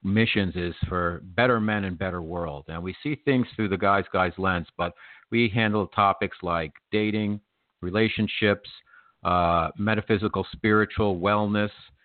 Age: 50-69